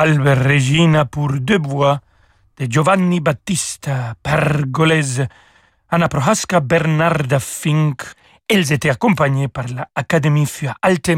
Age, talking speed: 40-59, 100 wpm